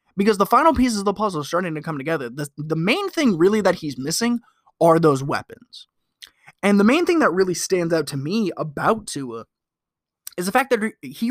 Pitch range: 155-215 Hz